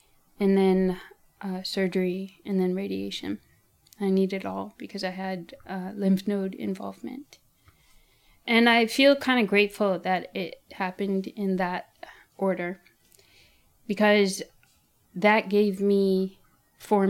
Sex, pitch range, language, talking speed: female, 180-210 Hz, English, 125 wpm